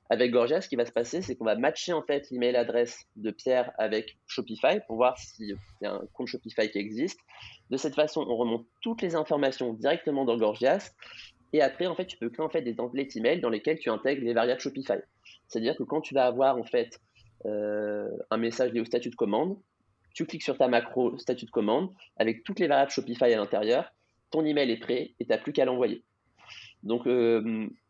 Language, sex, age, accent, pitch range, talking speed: French, male, 20-39, French, 115-140 Hz, 200 wpm